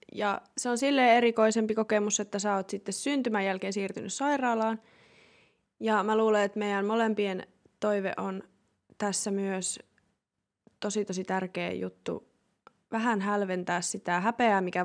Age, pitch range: 20-39, 190-220 Hz